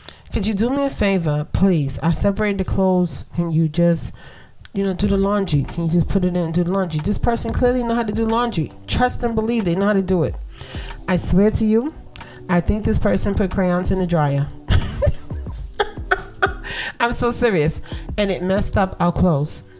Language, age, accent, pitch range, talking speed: English, 30-49, American, 170-210 Hz, 205 wpm